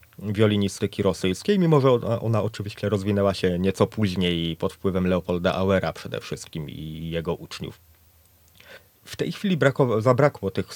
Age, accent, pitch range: 30-49, native, 95-125 Hz